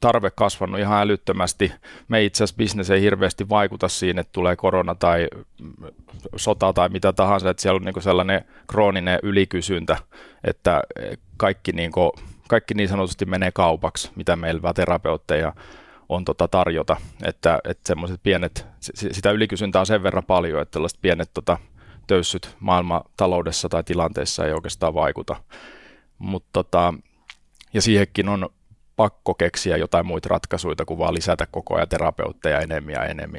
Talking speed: 145 wpm